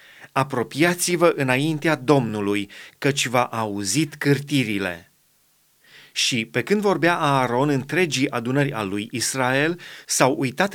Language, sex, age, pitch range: Romanian, male, 30-49, 130-155 Hz